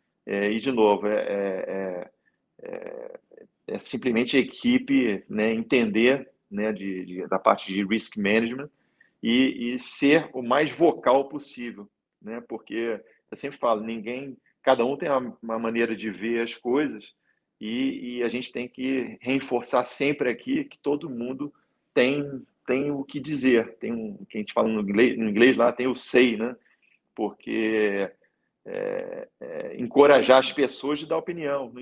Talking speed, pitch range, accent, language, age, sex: 165 wpm, 110-140 Hz, Brazilian, Portuguese, 40-59, male